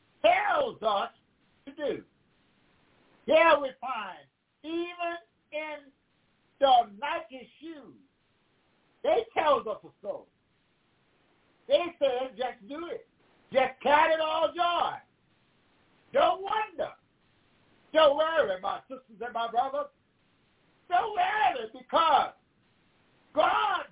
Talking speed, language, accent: 105 wpm, English, American